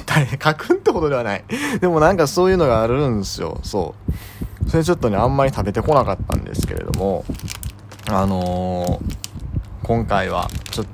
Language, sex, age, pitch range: Japanese, male, 20-39, 105-160 Hz